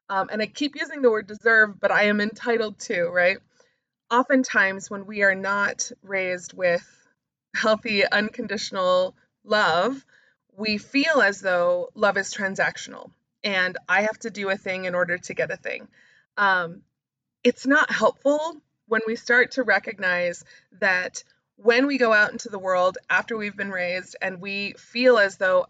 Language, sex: English, female